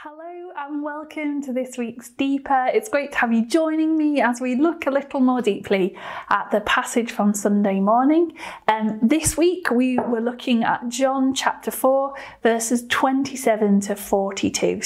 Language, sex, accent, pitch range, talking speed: English, female, British, 220-275 Hz, 160 wpm